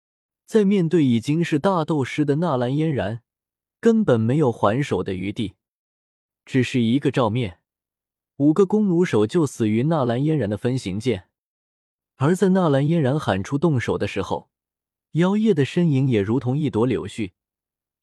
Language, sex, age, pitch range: Chinese, male, 20-39, 110-160 Hz